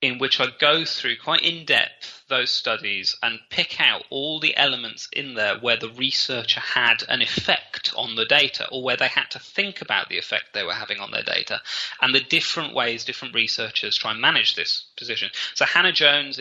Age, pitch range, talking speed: 30-49, 120-155 Hz, 200 wpm